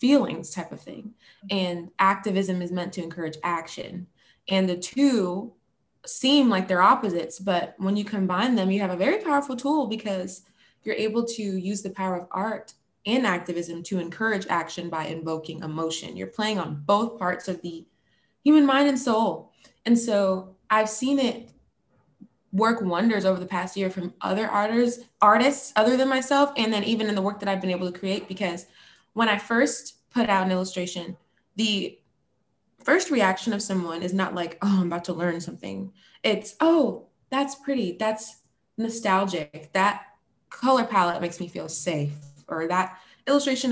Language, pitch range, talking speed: English, 180-235 Hz, 170 wpm